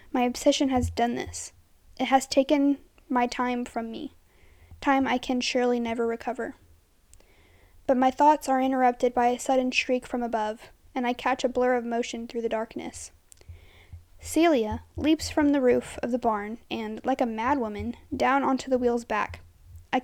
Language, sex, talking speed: English, female, 170 wpm